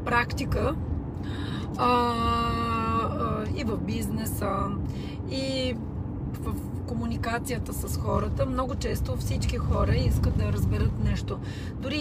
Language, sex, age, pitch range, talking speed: Bulgarian, female, 30-49, 95-110 Hz, 100 wpm